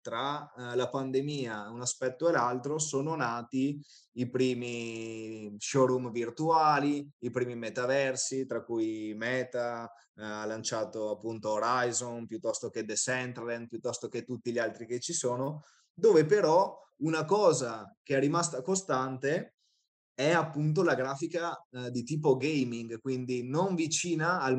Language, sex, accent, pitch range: Italian, male, native, 120-140 Hz